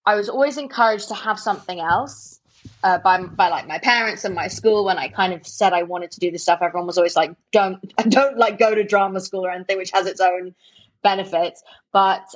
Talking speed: 230 wpm